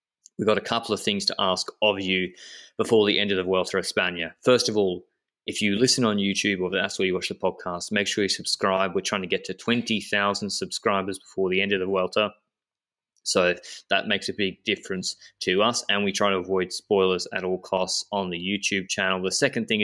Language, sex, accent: English, male, Australian